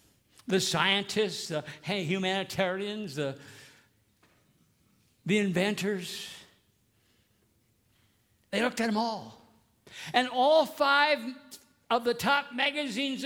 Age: 60-79